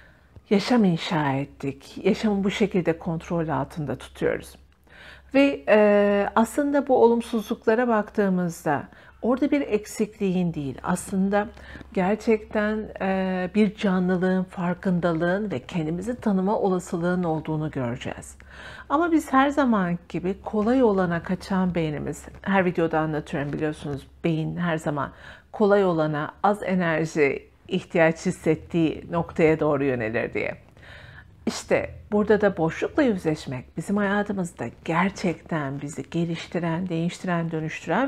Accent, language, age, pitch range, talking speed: native, Turkish, 60-79, 160-205 Hz, 105 wpm